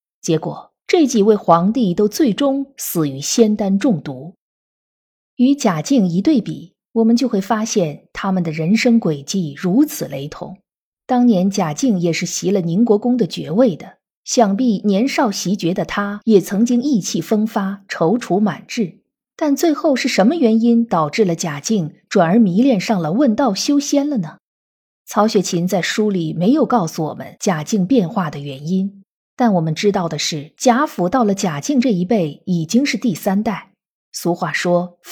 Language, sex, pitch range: Chinese, female, 175-245 Hz